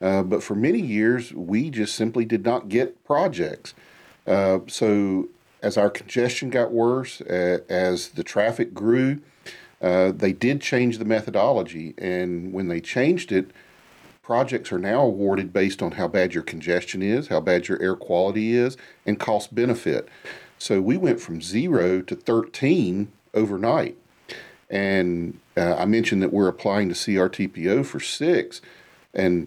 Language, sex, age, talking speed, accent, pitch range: English, male, 40-59, 155 wpm, American, 90-120 Hz